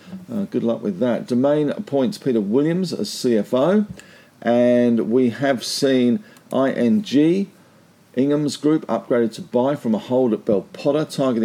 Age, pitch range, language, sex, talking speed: 50-69, 115-160 Hz, English, male, 145 wpm